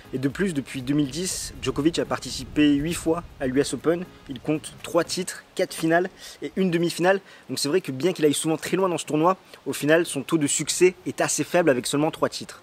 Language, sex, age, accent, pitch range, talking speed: French, male, 20-39, French, 135-165 Hz, 230 wpm